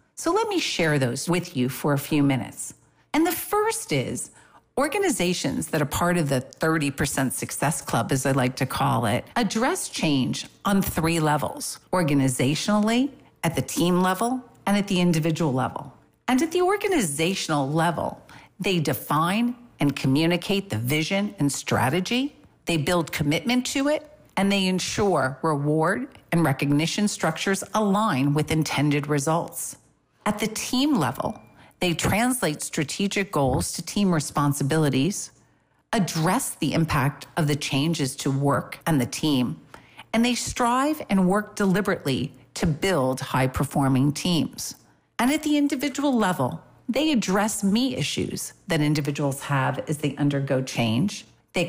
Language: English